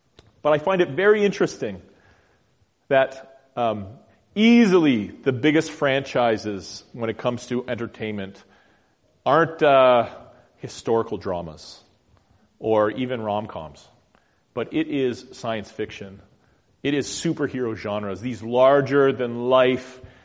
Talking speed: 105 wpm